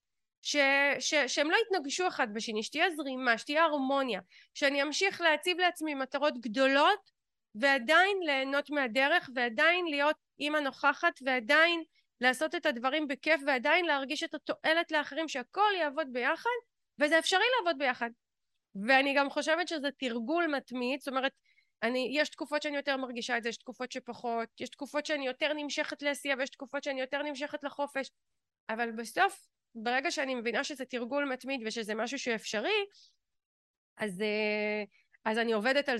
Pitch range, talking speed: 240-305 Hz, 150 wpm